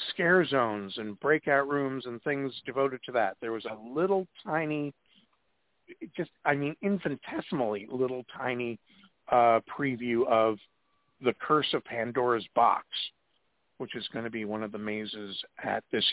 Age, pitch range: 50-69, 120-170 Hz